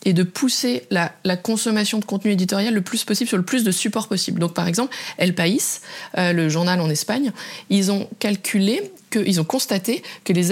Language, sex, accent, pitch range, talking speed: French, female, French, 170-205 Hz, 210 wpm